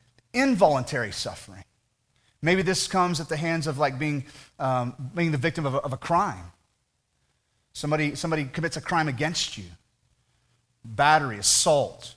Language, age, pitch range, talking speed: English, 30-49, 125-175 Hz, 145 wpm